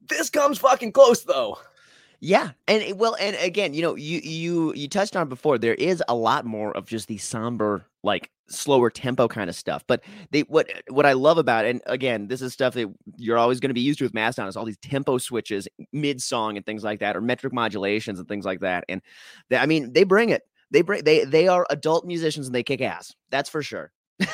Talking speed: 235 wpm